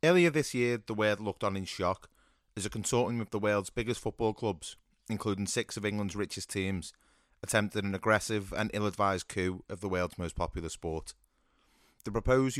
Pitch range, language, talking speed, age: 95-110 Hz, English, 180 wpm, 30-49